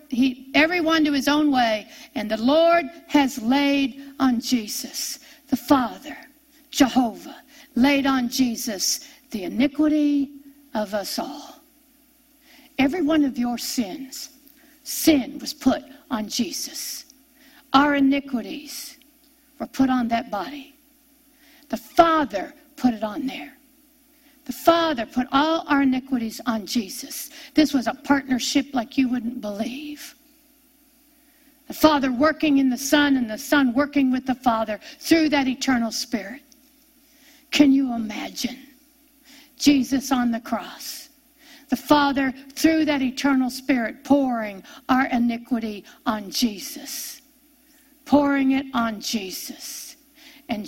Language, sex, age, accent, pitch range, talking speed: English, female, 60-79, American, 255-295 Hz, 120 wpm